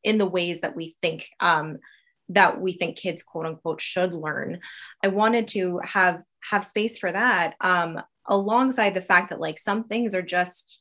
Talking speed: 185 wpm